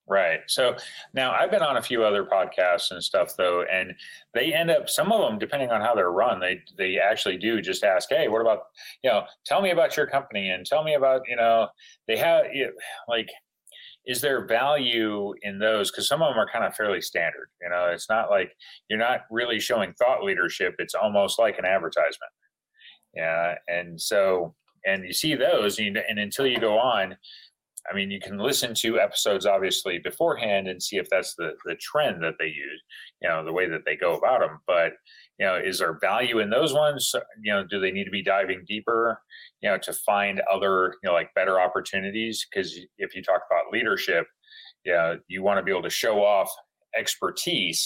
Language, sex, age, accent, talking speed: English, male, 30-49, American, 205 wpm